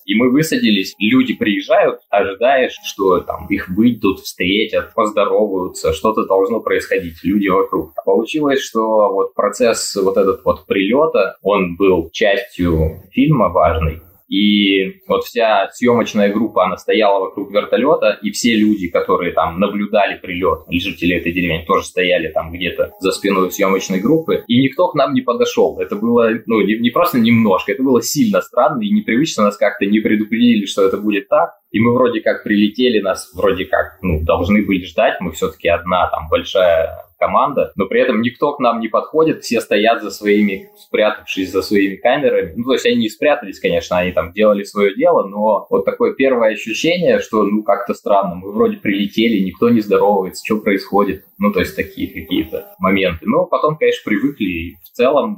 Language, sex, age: Russian, male, 20-39